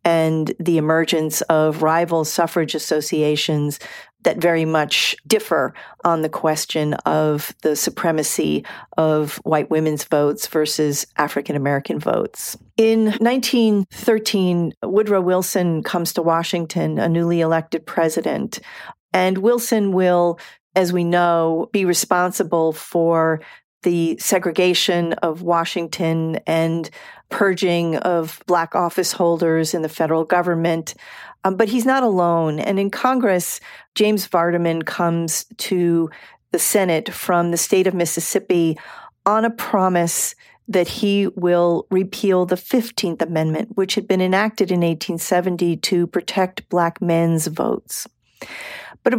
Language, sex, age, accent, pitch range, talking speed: English, female, 40-59, American, 160-190 Hz, 120 wpm